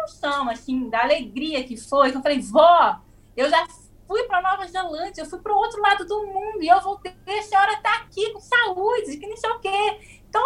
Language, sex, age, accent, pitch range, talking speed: Portuguese, female, 20-39, Brazilian, 245-360 Hz, 225 wpm